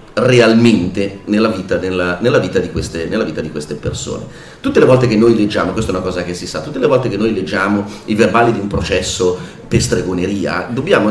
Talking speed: 215 wpm